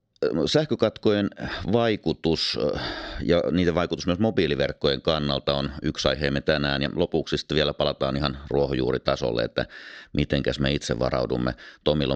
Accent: native